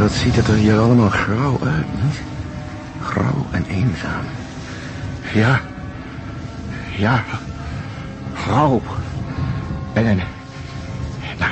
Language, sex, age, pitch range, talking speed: Dutch, male, 60-79, 100-125 Hz, 95 wpm